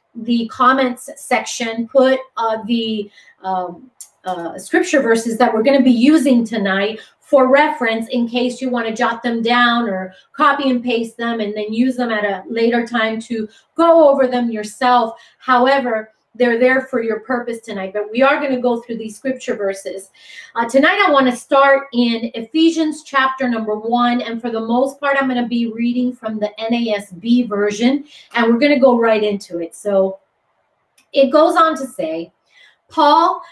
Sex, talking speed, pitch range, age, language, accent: female, 185 wpm, 230-275 Hz, 30-49, English, American